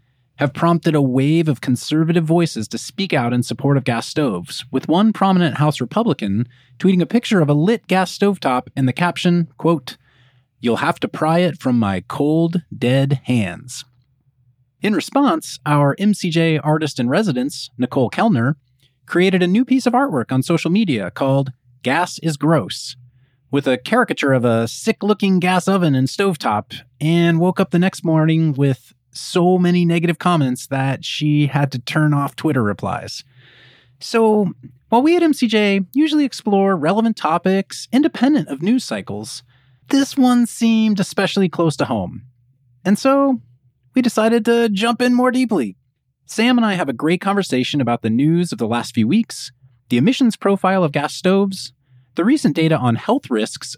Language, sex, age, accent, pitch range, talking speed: English, male, 30-49, American, 125-195 Hz, 165 wpm